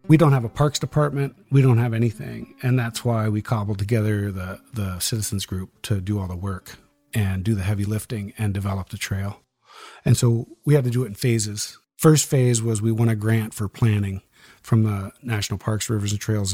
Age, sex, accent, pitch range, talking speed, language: 40-59, male, American, 110-150 Hz, 215 wpm, English